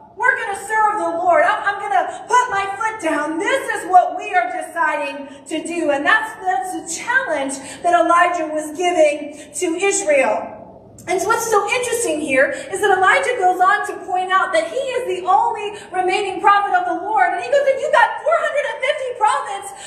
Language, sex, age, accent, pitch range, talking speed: English, female, 40-59, American, 310-405 Hz, 190 wpm